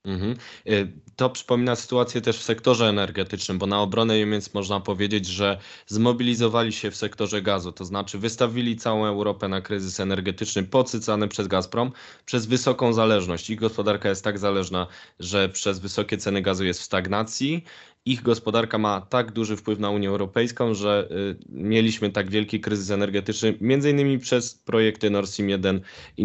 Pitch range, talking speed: 100-115 Hz, 155 wpm